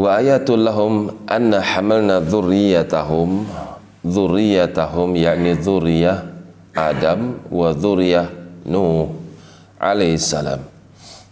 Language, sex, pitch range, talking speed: Indonesian, male, 80-95 Hz, 75 wpm